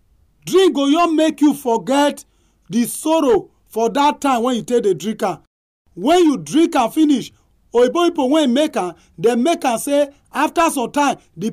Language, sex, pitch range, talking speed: English, male, 215-305 Hz, 160 wpm